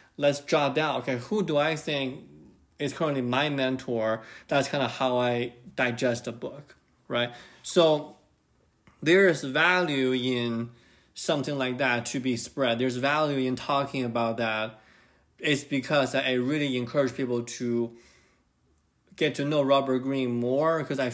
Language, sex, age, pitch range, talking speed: English, male, 20-39, 120-145 Hz, 150 wpm